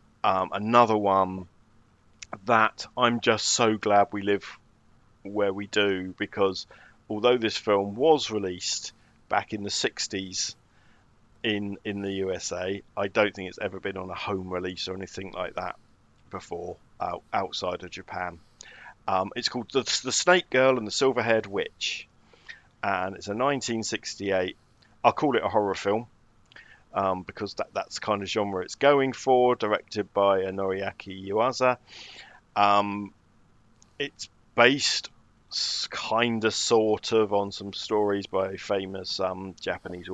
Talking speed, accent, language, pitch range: 145 wpm, British, English, 95-115 Hz